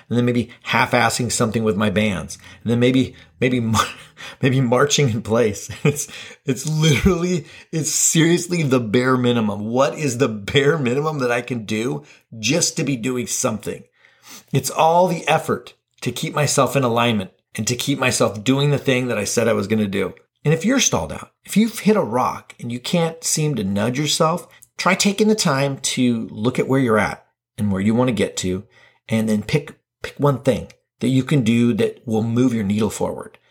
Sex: male